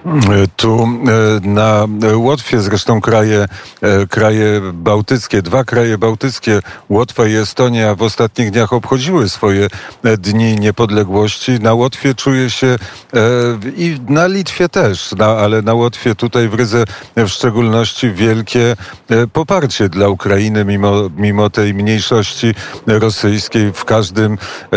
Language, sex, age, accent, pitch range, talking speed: Polish, male, 40-59, native, 105-120 Hz, 115 wpm